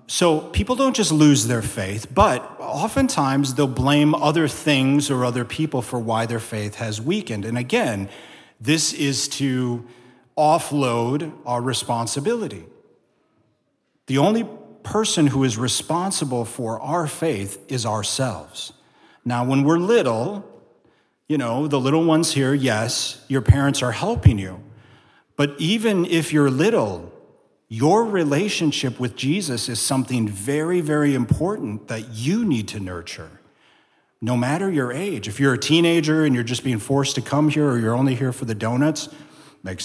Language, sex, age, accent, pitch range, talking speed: English, male, 40-59, American, 115-155 Hz, 150 wpm